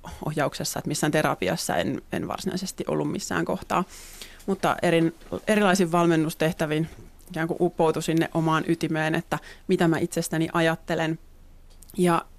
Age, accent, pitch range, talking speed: 30-49, native, 155-175 Hz, 120 wpm